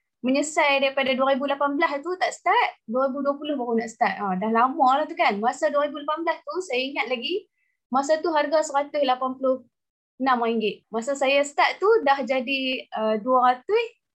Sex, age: female, 20-39